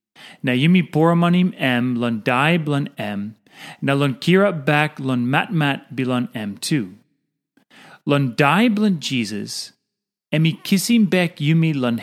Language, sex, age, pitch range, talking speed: English, male, 30-49, 125-180 Hz, 145 wpm